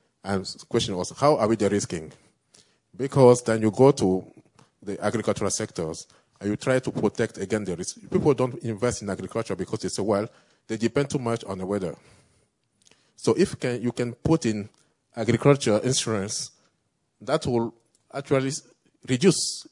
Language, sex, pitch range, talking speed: English, male, 105-130 Hz, 160 wpm